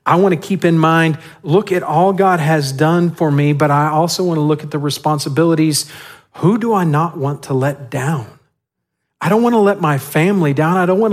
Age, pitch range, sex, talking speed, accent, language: 40-59, 135-165 Hz, male, 225 wpm, American, English